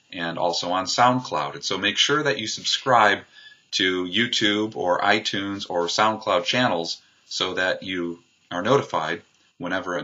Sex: male